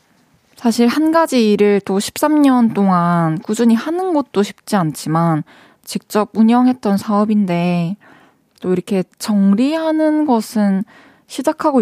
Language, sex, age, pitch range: Korean, female, 20-39, 185-235 Hz